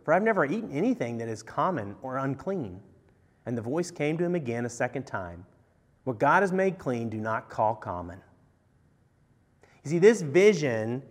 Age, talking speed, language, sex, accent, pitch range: 30-49, 180 wpm, English, male, American, 125-195 Hz